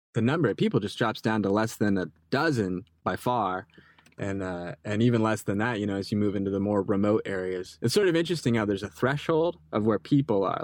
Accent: American